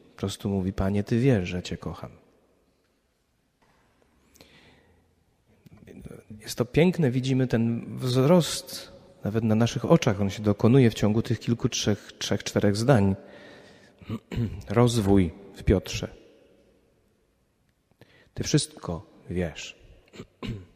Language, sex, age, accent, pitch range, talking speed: Polish, male, 40-59, native, 100-135 Hz, 105 wpm